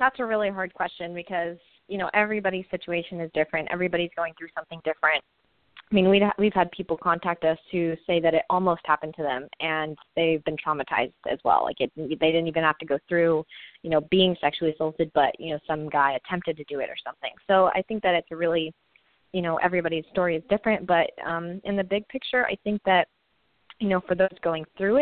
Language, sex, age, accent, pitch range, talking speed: English, female, 20-39, American, 160-185 Hz, 220 wpm